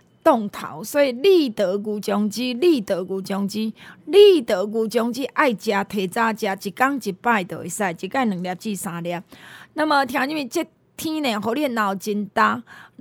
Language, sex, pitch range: Chinese, female, 215-290 Hz